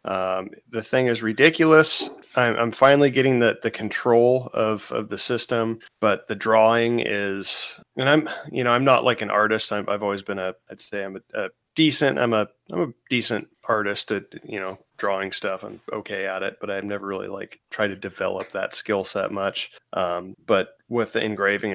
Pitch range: 100-125 Hz